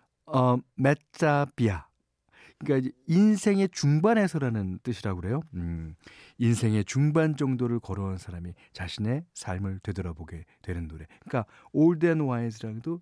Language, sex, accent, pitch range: Korean, male, native, 95-155 Hz